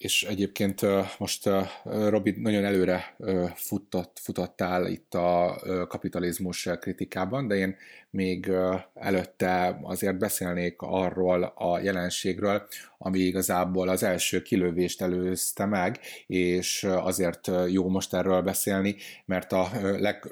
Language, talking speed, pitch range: Hungarian, 110 wpm, 90-100 Hz